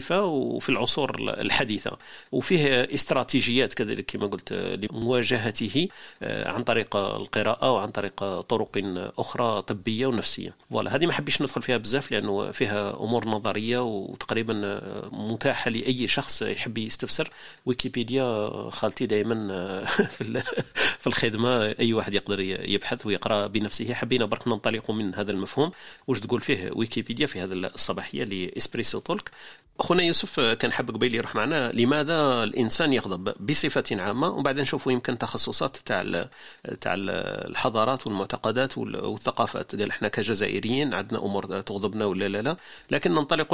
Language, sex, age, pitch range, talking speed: Arabic, male, 40-59, 105-130 Hz, 130 wpm